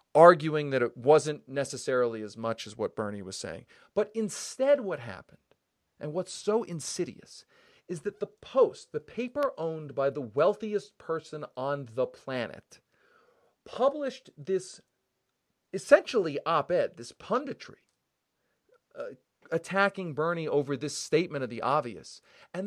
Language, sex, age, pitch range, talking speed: English, male, 40-59, 140-220 Hz, 130 wpm